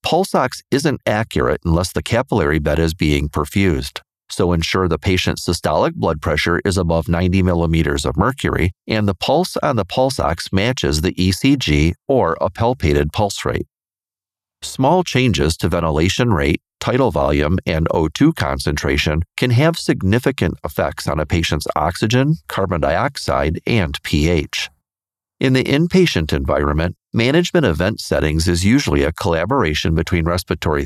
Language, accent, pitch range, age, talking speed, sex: English, American, 80-115 Hz, 40-59, 145 wpm, male